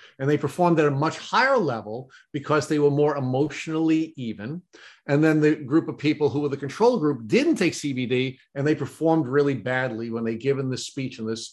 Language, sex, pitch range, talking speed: English, male, 130-170 Hz, 210 wpm